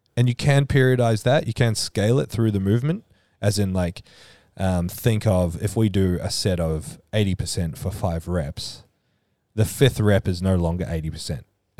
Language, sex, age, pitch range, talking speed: English, male, 20-39, 85-110 Hz, 180 wpm